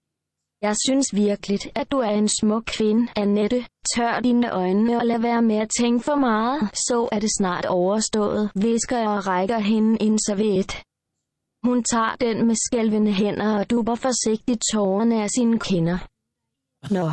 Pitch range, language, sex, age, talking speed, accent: 205-240 Hz, Danish, female, 20-39, 170 wpm, native